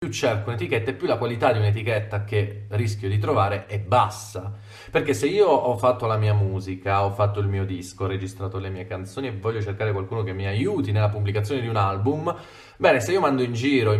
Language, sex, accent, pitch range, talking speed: Italian, male, native, 105-120 Hz, 225 wpm